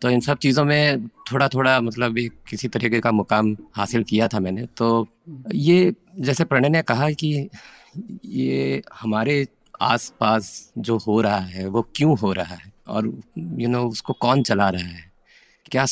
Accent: native